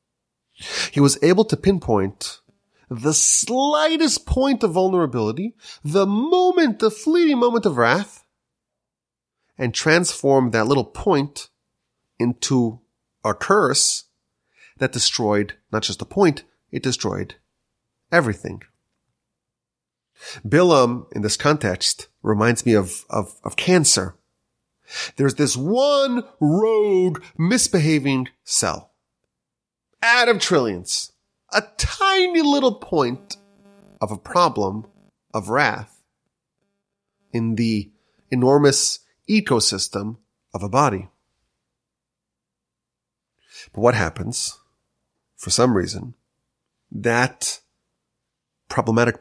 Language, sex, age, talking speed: English, male, 30-49, 95 wpm